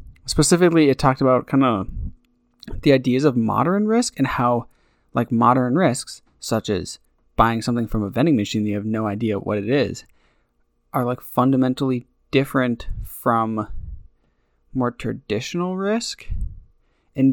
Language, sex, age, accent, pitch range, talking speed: English, male, 20-39, American, 110-135 Hz, 140 wpm